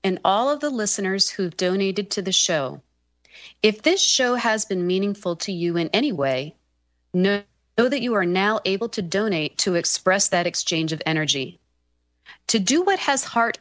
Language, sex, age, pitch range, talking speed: English, female, 30-49, 155-220 Hz, 180 wpm